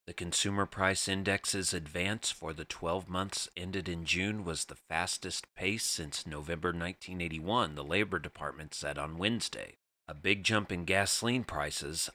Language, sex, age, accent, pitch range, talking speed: English, male, 40-59, American, 80-105 Hz, 155 wpm